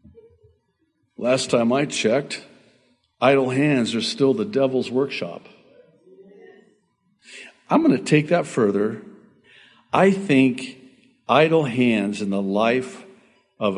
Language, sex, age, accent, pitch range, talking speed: English, male, 50-69, American, 115-145 Hz, 110 wpm